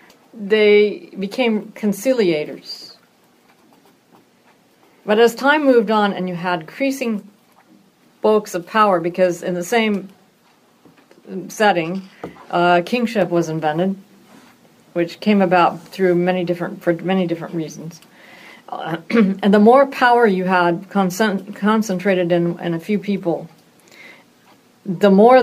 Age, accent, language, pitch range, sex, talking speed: 50-69, American, English, 175-210 Hz, female, 120 wpm